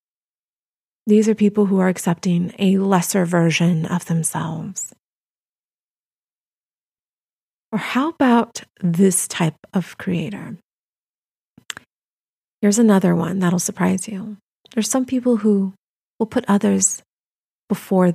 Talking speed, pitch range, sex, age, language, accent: 105 wpm, 180-215 Hz, female, 30-49, English, American